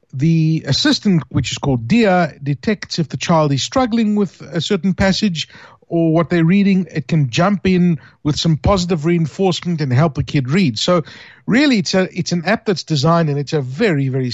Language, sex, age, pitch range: English, male, 50-69, 145-190 Hz